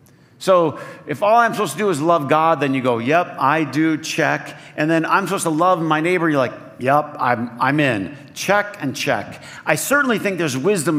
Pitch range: 130-175 Hz